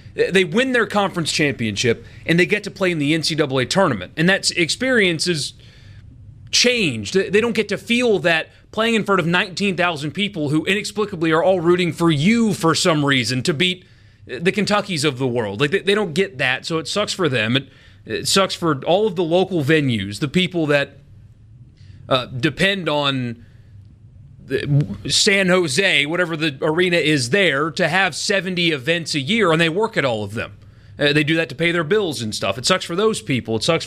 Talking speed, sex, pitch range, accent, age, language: 195 wpm, male, 130-190 Hz, American, 30-49, English